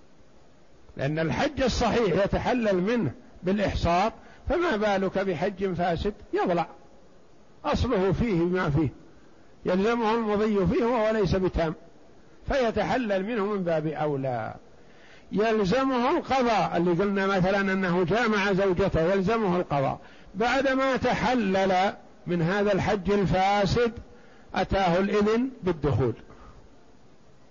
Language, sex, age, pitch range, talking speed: Arabic, male, 60-79, 185-230 Hz, 100 wpm